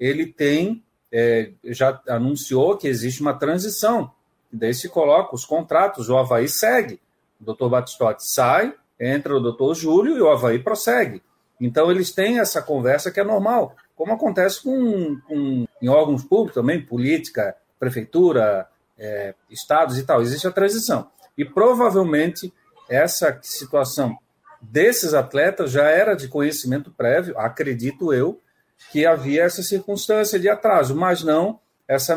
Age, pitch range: 40-59, 145-215 Hz